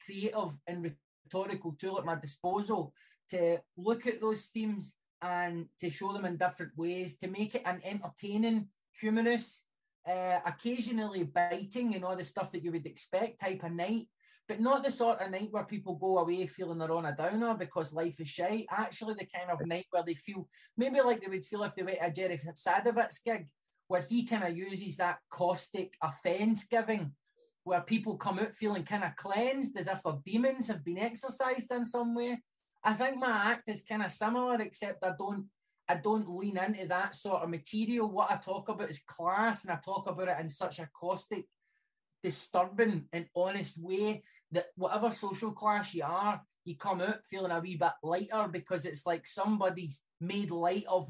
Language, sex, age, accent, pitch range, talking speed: English, male, 20-39, British, 175-215 Hz, 190 wpm